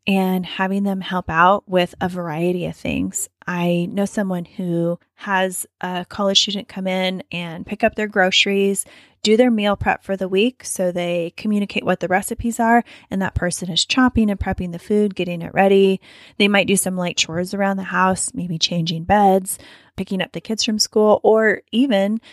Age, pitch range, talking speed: 10-29, 175-205 Hz, 190 wpm